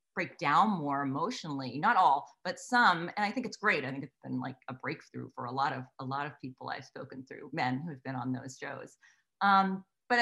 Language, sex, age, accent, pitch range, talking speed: English, female, 30-49, American, 160-230 Hz, 230 wpm